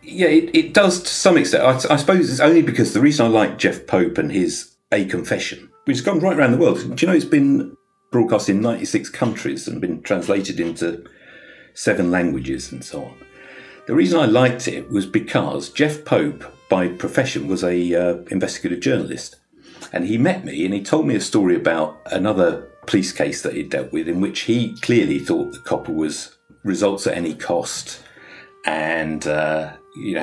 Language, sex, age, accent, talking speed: English, male, 50-69, British, 195 wpm